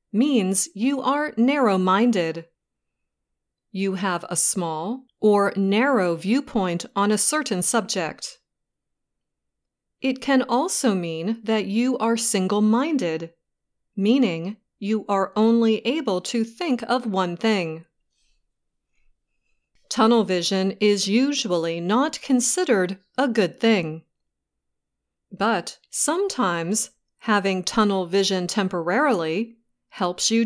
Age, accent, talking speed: 30-49, American, 100 wpm